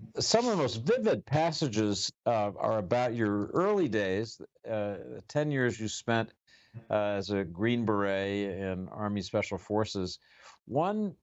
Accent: American